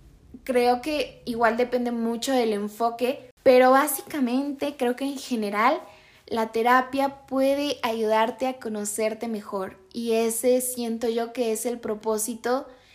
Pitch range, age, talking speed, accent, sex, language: 225-255 Hz, 10-29, 130 wpm, Mexican, female, Spanish